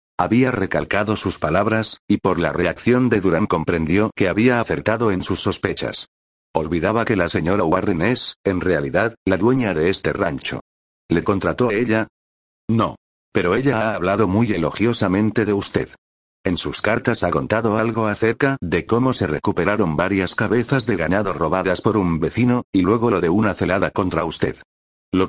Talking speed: 170 wpm